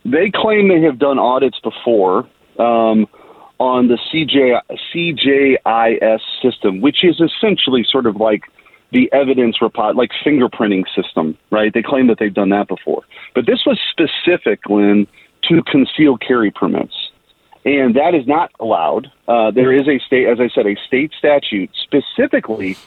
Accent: American